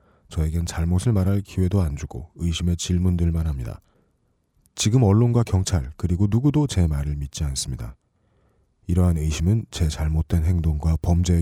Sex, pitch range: male, 80-95 Hz